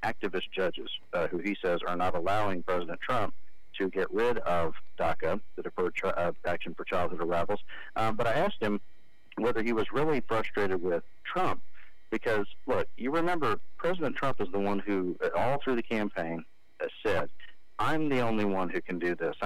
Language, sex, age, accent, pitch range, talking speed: English, male, 40-59, American, 90-120 Hz, 185 wpm